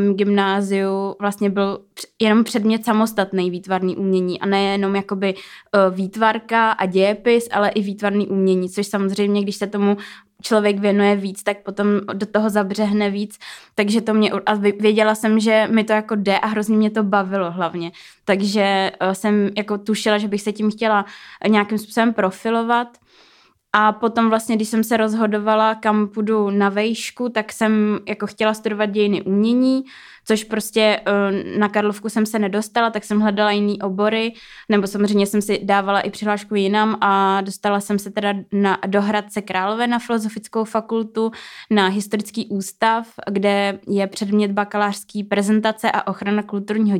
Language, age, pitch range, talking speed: Czech, 20-39, 200-220 Hz, 155 wpm